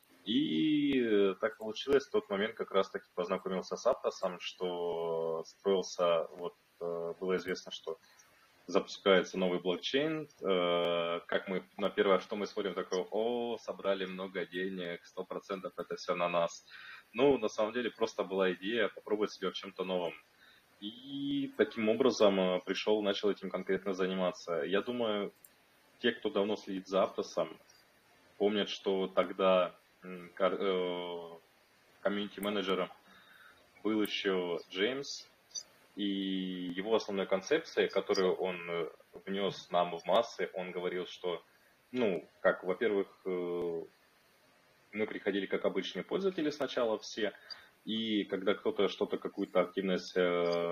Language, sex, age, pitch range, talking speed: Russian, male, 20-39, 90-105 Hz, 120 wpm